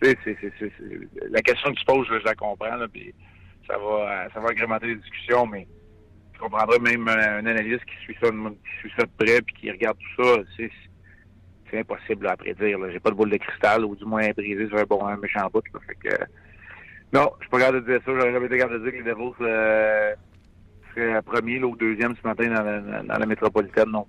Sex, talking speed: male, 250 wpm